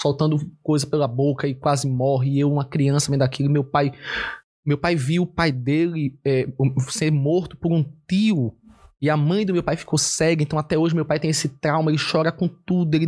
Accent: Brazilian